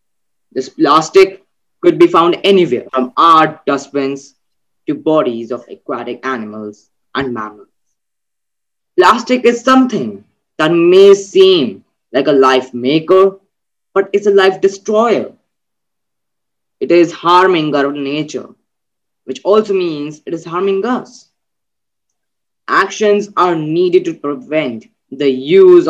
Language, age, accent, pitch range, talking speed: English, 20-39, Indian, 135-200 Hz, 120 wpm